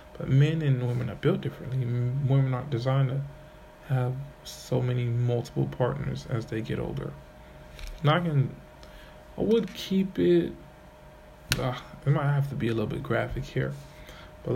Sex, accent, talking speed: male, American, 160 wpm